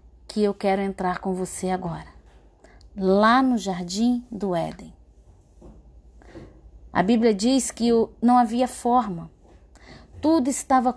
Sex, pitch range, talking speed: female, 180-245 Hz, 115 wpm